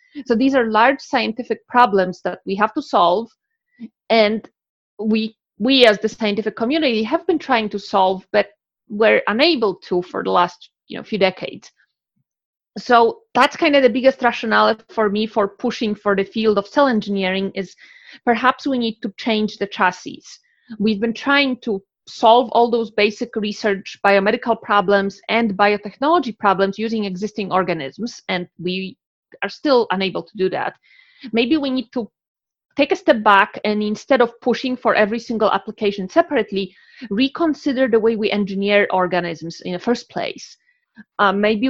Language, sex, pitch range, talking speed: Slovak, female, 200-255 Hz, 165 wpm